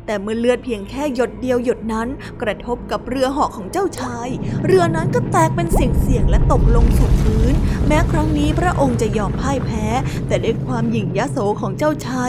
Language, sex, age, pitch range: Thai, female, 20-39, 225-290 Hz